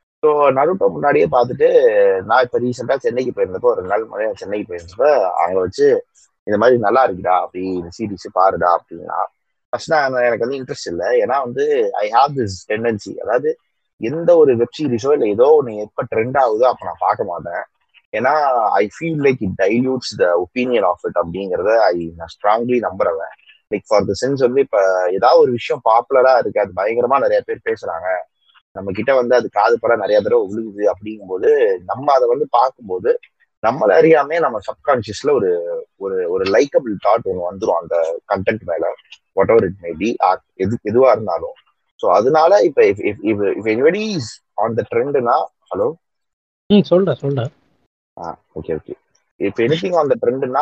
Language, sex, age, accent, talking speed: Tamil, male, 20-39, native, 165 wpm